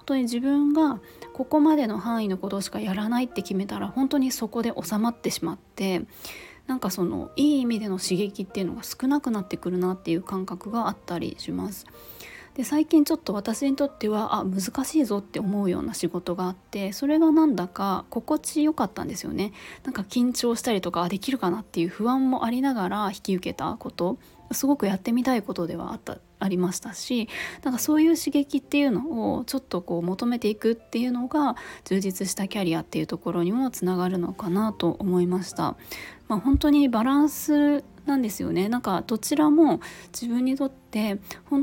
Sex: female